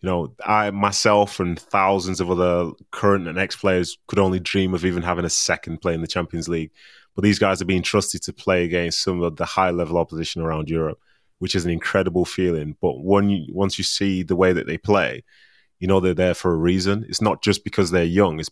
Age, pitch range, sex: 20-39, 85-95 Hz, male